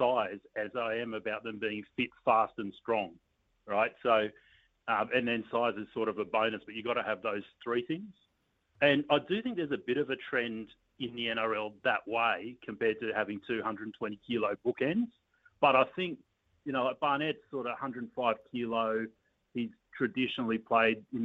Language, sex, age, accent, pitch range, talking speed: English, male, 40-59, Australian, 110-130 Hz, 185 wpm